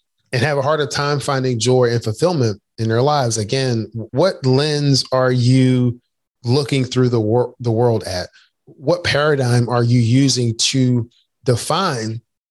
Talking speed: 145 wpm